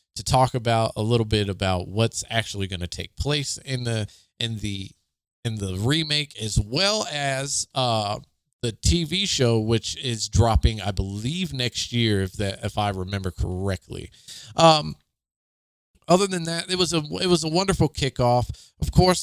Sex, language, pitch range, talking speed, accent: male, English, 100-135 Hz, 170 wpm, American